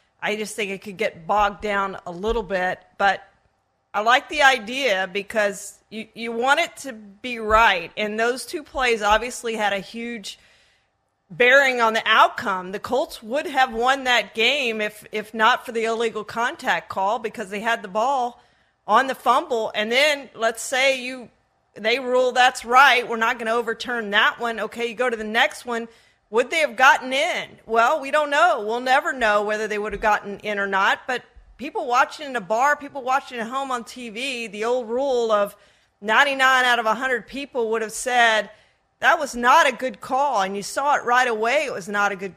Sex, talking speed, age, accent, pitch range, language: female, 205 wpm, 40-59, American, 210-260 Hz, English